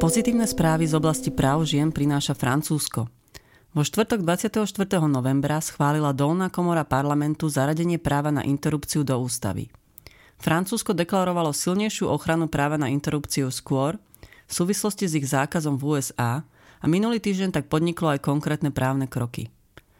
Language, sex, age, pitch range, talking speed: Slovak, female, 30-49, 135-170 Hz, 140 wpm